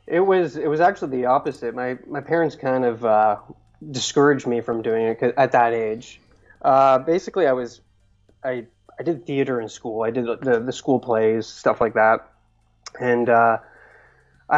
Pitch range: 115-145 Hz